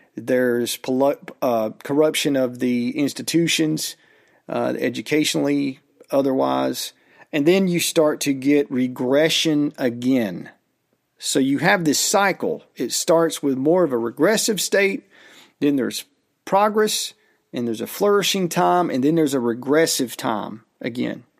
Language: English